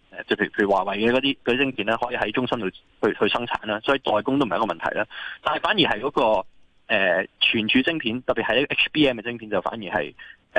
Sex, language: male, Chinese